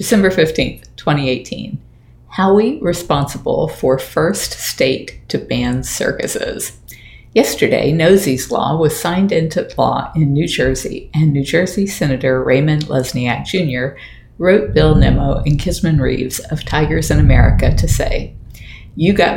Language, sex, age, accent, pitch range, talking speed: English, female, 50-69, American, 135-165 Hz, 130 wpm